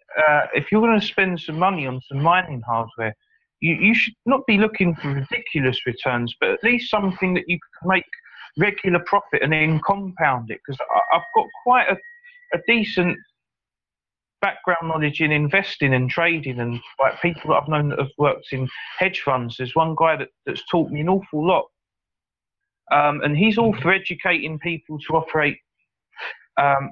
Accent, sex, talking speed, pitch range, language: British, male, 180 wpm, 140-190 Hz, English